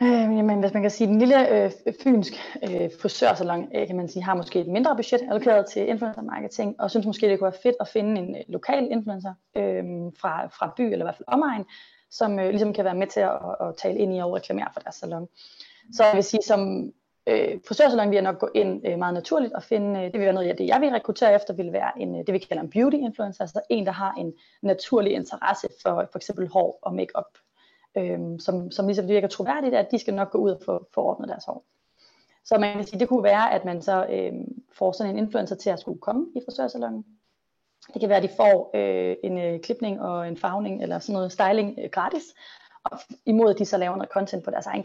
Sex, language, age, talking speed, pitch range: female, Danish, 30-49, 245 wpm, 190-230 Hz